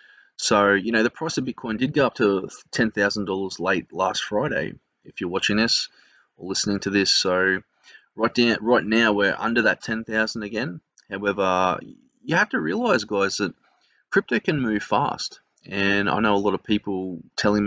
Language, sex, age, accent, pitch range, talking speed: English, male, 20-39, Australian, 95-110 Hz, 175 wpm